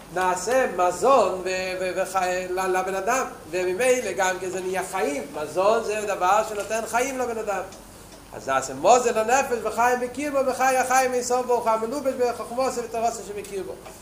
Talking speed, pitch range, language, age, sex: 140 wpm, 200-250 Hz, Hebrew, 40-59, male